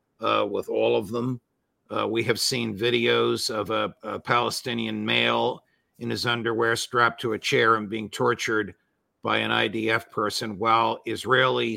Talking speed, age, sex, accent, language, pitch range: 160 wpm, 50-69, male, American, English, 110-125 Hz